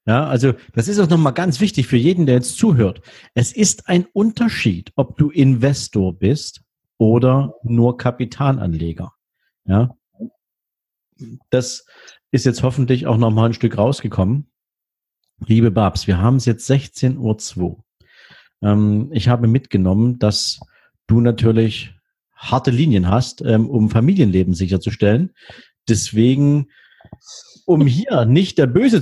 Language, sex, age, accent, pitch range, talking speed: German, male, 50-69, German, 105-130 Hz, 120 wpm